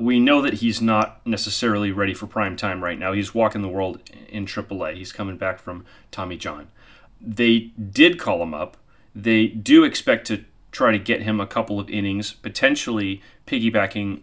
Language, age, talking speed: English, 30-49, 180 wpm